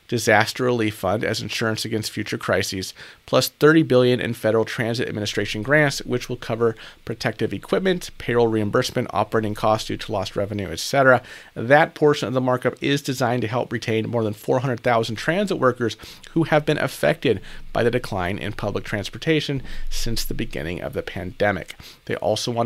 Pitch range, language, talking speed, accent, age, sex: 105-130 Hz, English, 170 wpm, American, 40-59, male